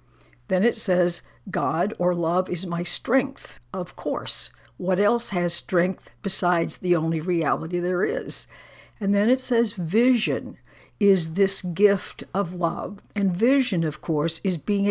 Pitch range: 170-210 Hz